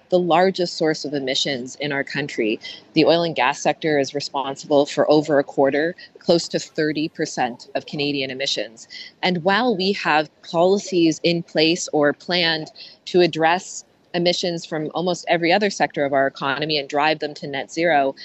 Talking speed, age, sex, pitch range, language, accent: 170 wpm, 20-39, female, 140-175 Hz, English, American